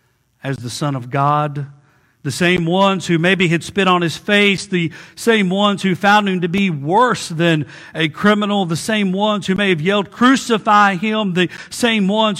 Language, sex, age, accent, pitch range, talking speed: English, male, 50-69, American, 180-235 Hz, 190 wpm